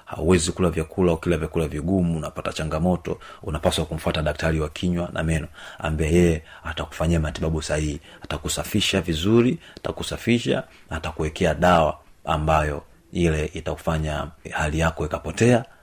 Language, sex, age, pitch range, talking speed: Swahili, male, 30-49, 75-90 Hz, 120 wpm